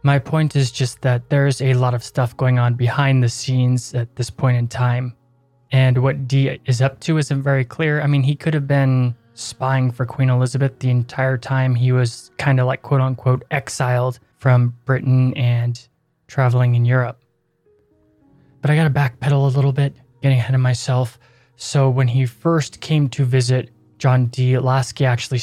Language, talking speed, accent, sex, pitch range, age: English, 180 wpm, American, male, 125-140 Hz, 20-39